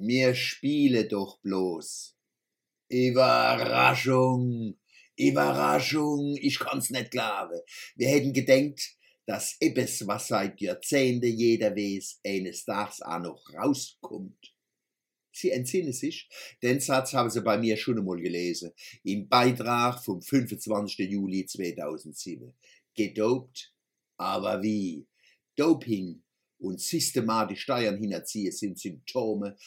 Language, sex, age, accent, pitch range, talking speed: German, male, 60-79, German, 100-130 Hz, 105 wpm